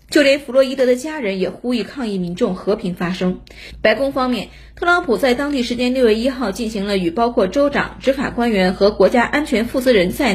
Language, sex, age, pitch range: Chinese, female, 20-39, 200-275 Hz